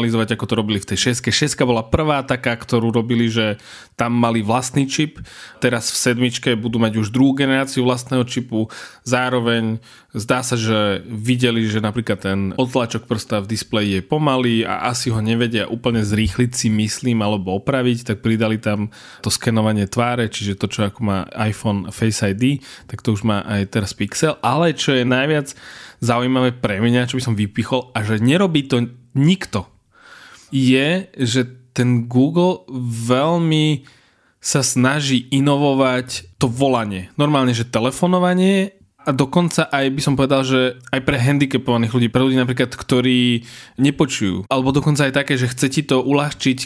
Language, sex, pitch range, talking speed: Slovak, male, 115-135 Hz, 165 wpm